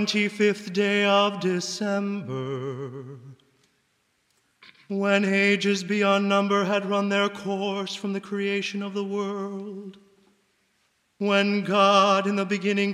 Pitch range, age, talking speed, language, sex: 195-200 Hz, 30-49, 105 wpm, English, male